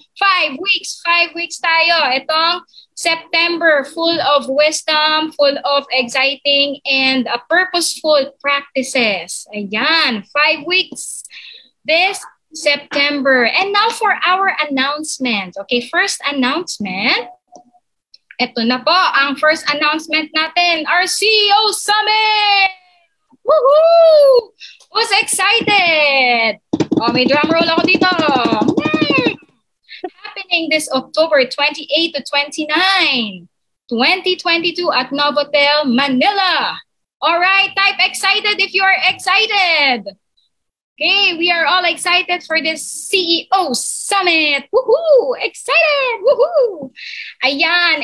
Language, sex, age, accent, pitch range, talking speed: Filipino, female, 20-39, native, 280-365 Hz, 100 wpm